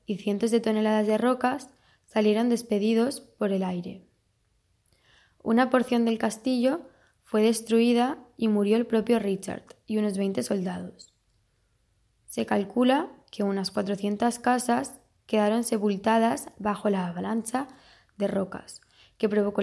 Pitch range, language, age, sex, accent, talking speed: 205-240 Hz, Czech, 10-29, female, Spanish, 125 wpm